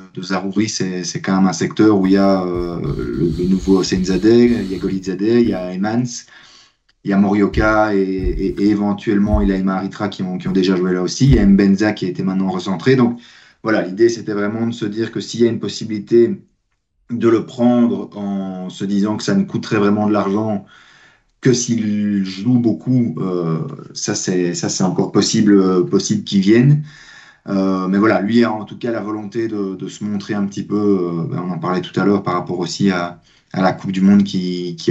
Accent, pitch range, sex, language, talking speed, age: French, 95-115 Hz, male, French, 225 wpm, 30-49